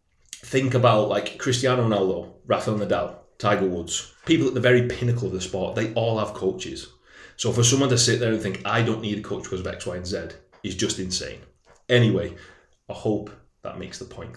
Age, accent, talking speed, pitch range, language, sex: 30-49, British, 210 wpm, 95-125 Hz, English, male